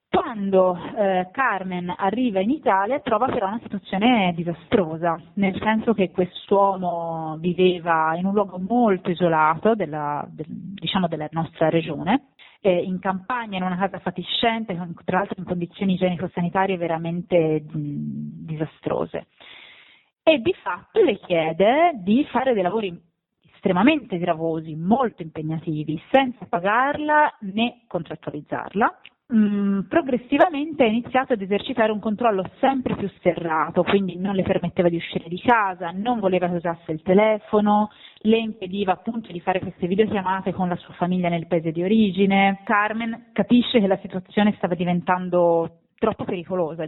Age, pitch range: 30-49, 175-215 Hz